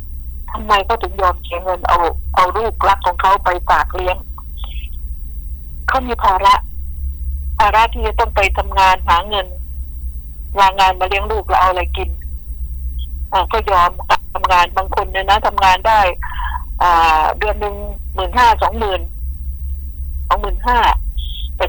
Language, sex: Thai, female